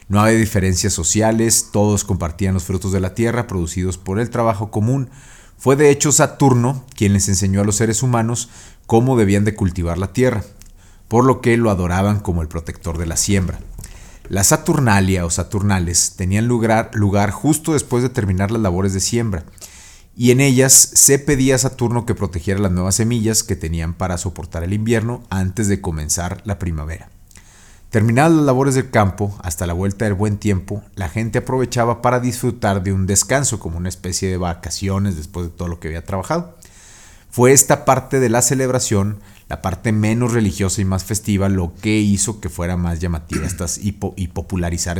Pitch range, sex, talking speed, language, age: 95-115 Hz, male, 185 wpm, Spanish, 40-59